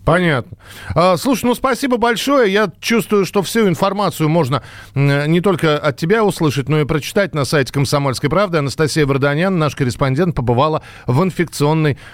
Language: Russian